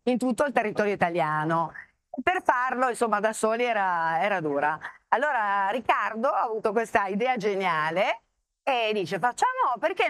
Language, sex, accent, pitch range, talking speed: Italian, female, native, 205-250 Hz, 145 wpm